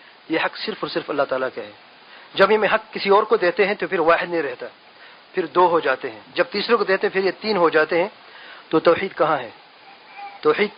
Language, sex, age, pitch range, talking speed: English, male, 40-59, 160-200 Hz, 240 wpm